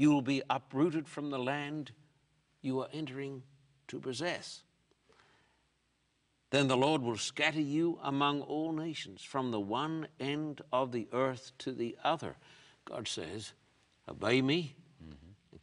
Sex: male